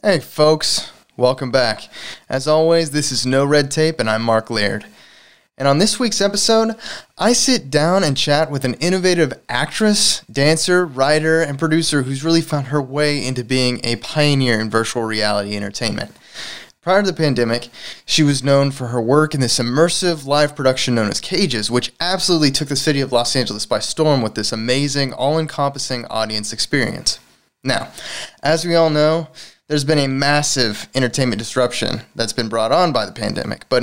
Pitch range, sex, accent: 125-160 Hz, male, American